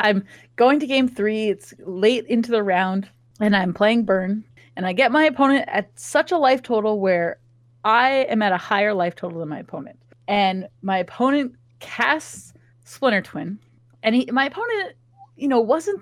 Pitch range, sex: 180-255 Hz, female